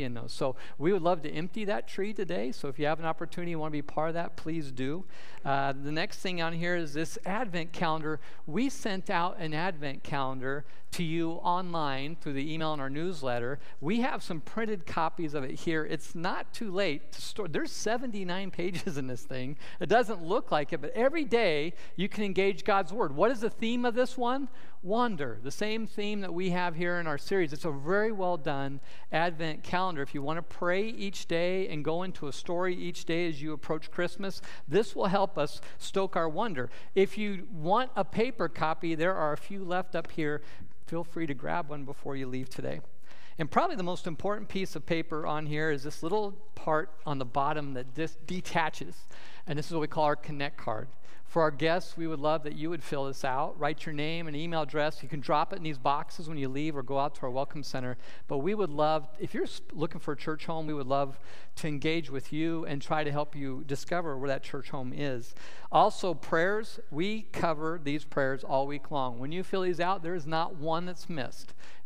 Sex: male